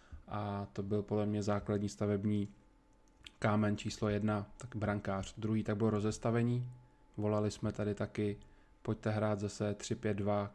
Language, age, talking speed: Czech, 20-39, 135 wpm